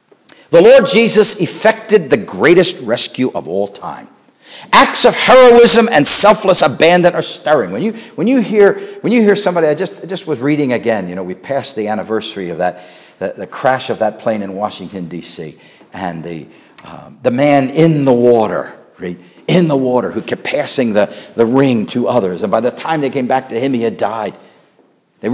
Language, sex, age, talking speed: English, male, 50-69, 200 wpm